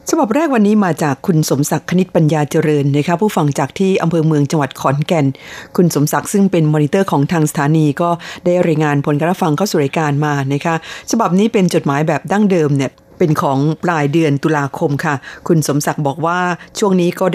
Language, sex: Thai, female